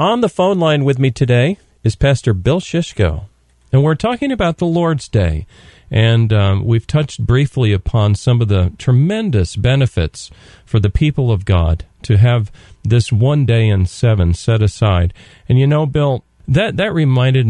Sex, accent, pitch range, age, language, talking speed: male, American, 100-140 Hz, 40-59, English, 170 wpm